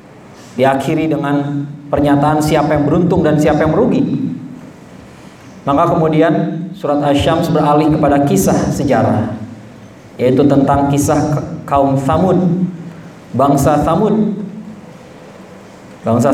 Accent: native